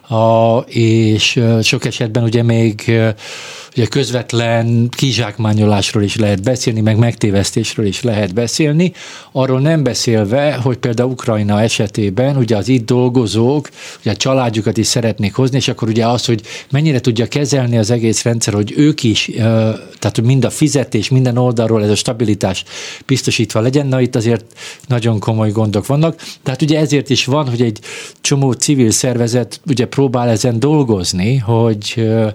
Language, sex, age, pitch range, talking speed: Hungarian, male, 50-69, 110-130 Hz, 145 wpm